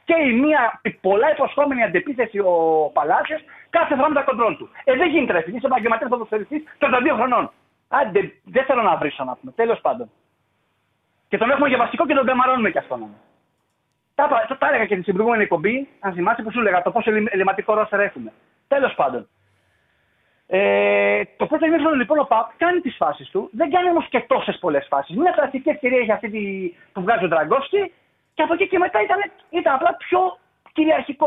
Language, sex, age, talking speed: Greek, male, 30-49, 185 wpm